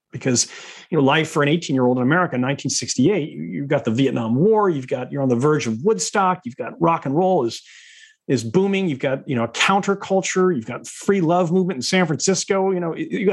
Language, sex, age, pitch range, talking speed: English, male, 40-59, 130-185 Hz, 220 wpm